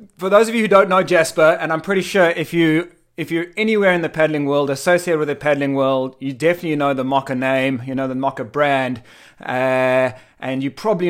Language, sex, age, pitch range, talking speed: English, male, 30-49, 140-165 Hz, 230 wpm